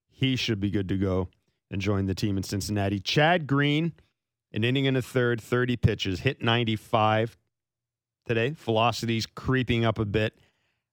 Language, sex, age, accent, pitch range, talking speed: English, male, 40-59, American, 105-125 Hz, 160 wpm